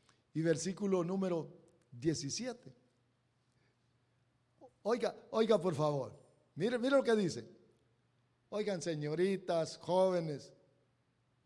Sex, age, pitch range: male, 50-69, 160-235 Hz